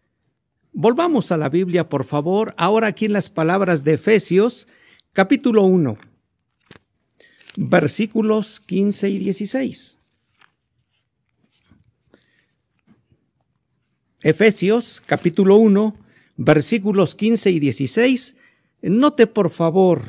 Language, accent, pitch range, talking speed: Spanish, Mexican, 140-200 Hz, 85 wpm